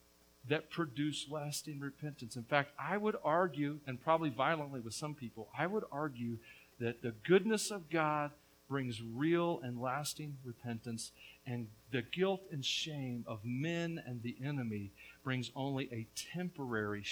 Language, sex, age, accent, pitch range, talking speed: English, male, 50-69, American, 120-180 Hz, 145 wpm